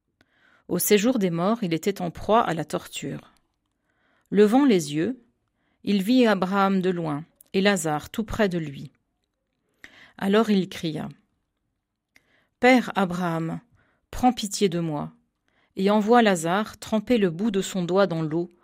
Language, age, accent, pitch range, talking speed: French, 40-59, French, 170-220 Hz, 145 wpm